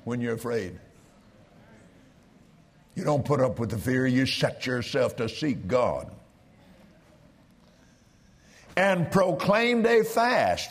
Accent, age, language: American, 50-69, English